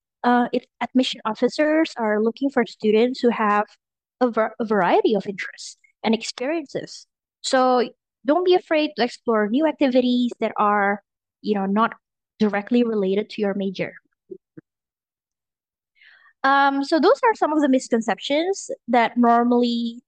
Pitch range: 215-270 Hz